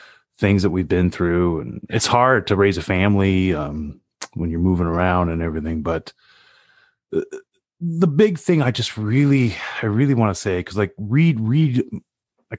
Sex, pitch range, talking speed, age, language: male, 90-120 Hz, 170 wpm, 30-49, English